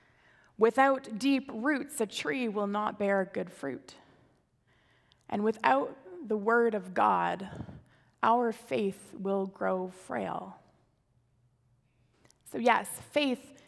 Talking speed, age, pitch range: 105 wpm, 20-39, 185-245 Hz